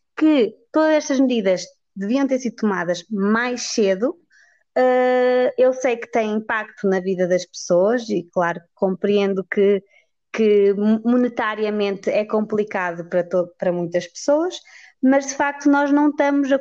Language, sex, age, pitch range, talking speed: Portuguese, female, 20-39, 205-260 Hz, 145 wpm